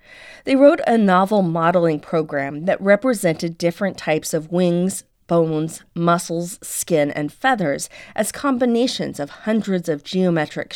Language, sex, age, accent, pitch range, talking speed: English, female, 40-59, American, 170-225 Hz, 130 wpm